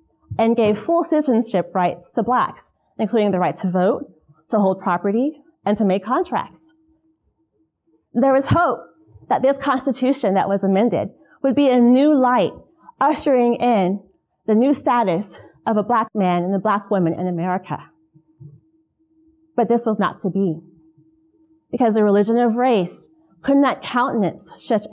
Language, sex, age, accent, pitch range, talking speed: English, female, 30-49, American, 195-275 Hz, 150 wpm